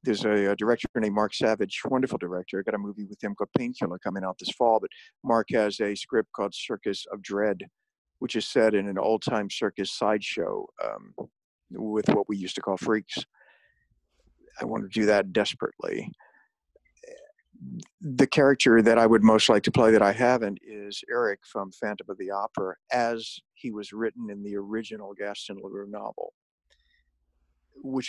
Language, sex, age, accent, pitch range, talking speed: English, male, 50-69, American, 100-125 Hz, 175 wpm